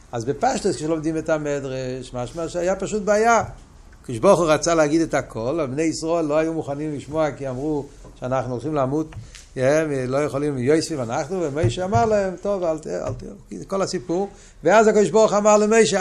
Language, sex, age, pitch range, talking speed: Hebrew, male, 60-79, 155-205 Hz, 185 wpm